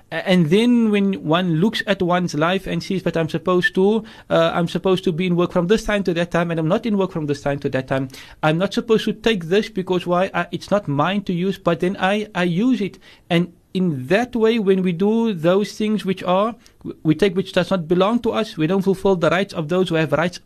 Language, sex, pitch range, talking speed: English, male, 165-205 Hz, 250 wpm